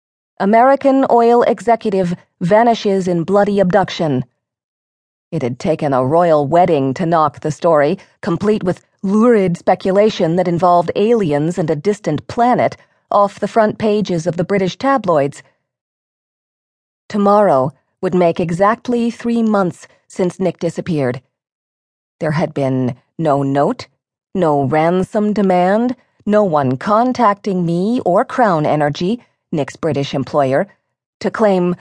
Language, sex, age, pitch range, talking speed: English, female, 40-59, 145-205 Hz, 125 wpm